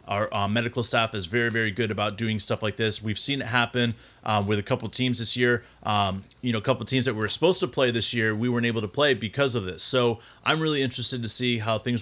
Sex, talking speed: male, 270 wpm